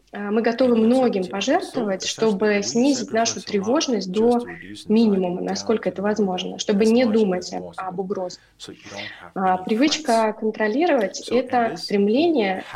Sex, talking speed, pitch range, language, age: female, 110 wpm, 195-240 Hz, Russian, 20-39